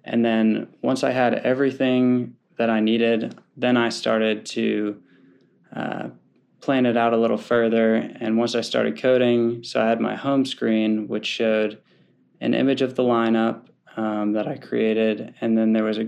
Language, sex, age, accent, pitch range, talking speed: English, male, 20-39, American, 110-120 Hz, 175 wpm